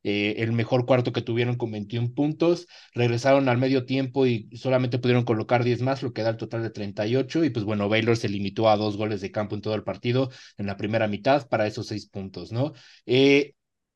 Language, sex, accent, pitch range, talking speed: Spanish, male, Mexican, 110-130 Hz, 220 wpm